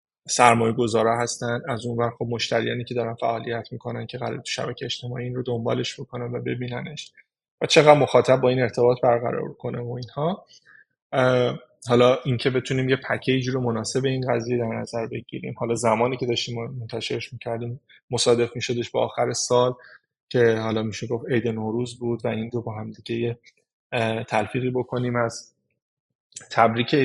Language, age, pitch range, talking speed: Persian, 20-39, 115-130 Hz, 160 wpm